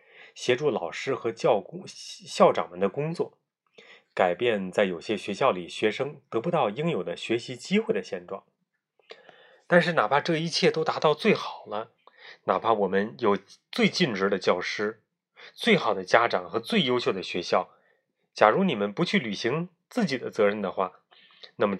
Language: Chinese